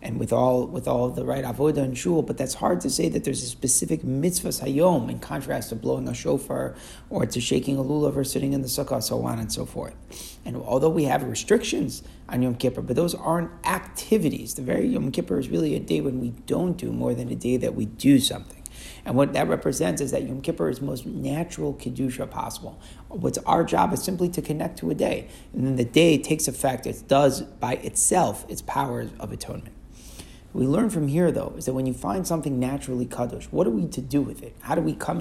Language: English